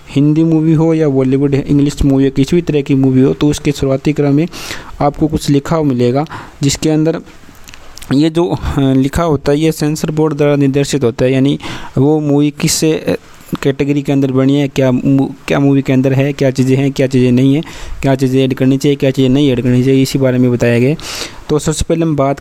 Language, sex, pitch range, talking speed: Hindi, male, 130-145 Hz, 215 wpm